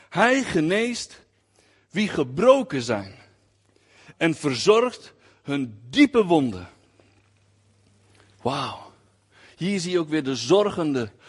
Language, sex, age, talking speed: Dutch, male, 60-79, 95 wpm